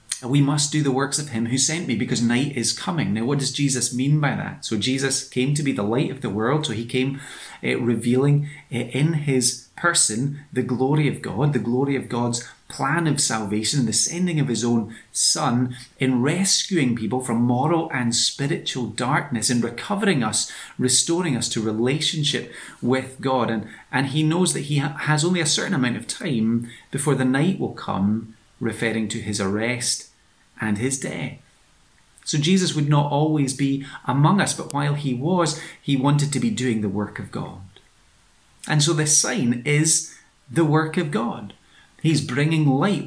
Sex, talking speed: male, 185 wpm